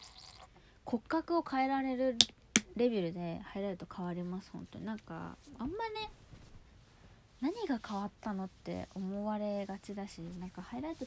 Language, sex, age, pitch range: Japanese, female, 20-39, 180-265 Hz